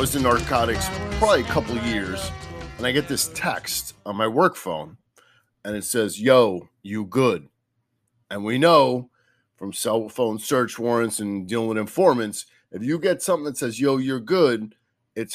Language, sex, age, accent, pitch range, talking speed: English, male, 30-49, American, 105-130 Hz, 175 wpm